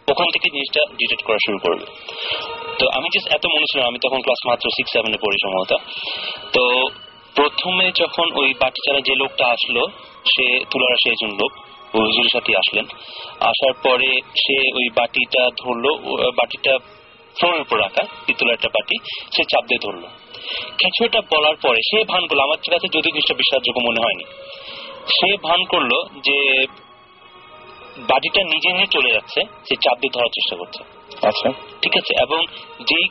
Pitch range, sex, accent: 130-165 Hz, male, native